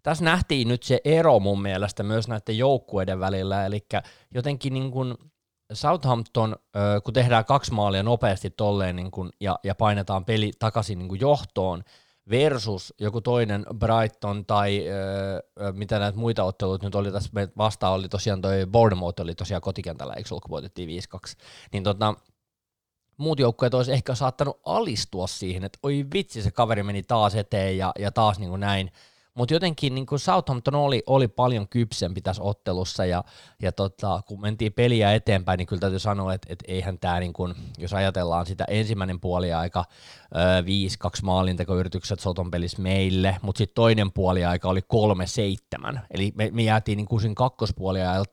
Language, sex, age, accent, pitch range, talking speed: Finnish, male, 20-39, native, 95-120 Hz, 160 wpm